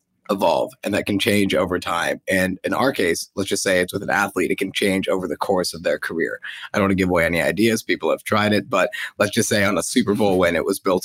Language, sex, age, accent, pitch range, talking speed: English, male, 20-39, American, 95-110 Hz, 275 wpm